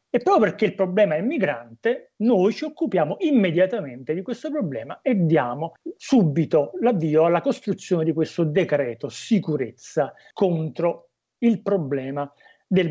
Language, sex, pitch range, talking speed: Italian, male, 155-215 Hz, 130 wpm